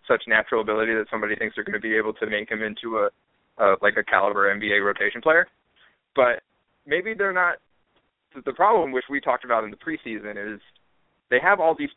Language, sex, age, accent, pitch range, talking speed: English, male, 20-39, American, 110-155 Hz, 205 wpm